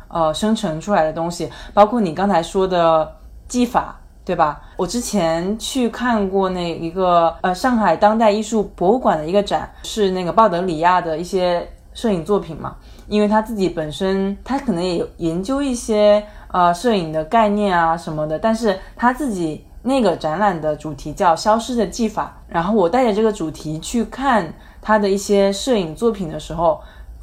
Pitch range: 165-210 Hz